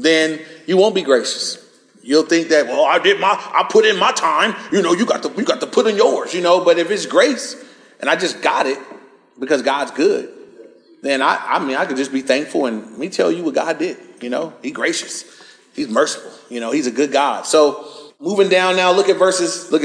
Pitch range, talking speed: 155-195 Hz, 240 wpm